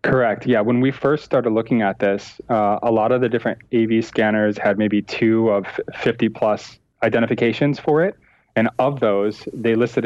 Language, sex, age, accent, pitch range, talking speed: English, male, 20-39, American, 100-120 Hz, 180 wpm